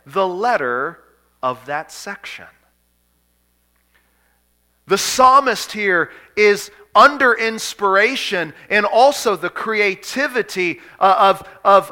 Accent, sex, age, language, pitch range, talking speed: American, male, 40-59, English, 160-230 Hz, 80 wpm